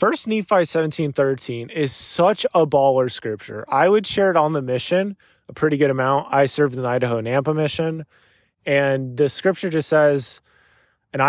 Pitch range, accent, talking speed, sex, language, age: 135-185 Hz, American, 170 wpm, male, English, 20-39